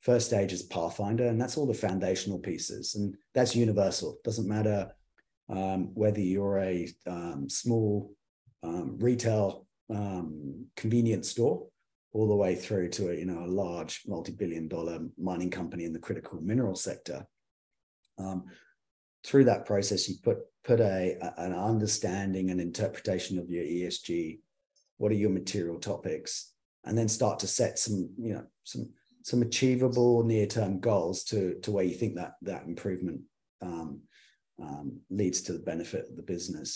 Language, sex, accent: English, male, British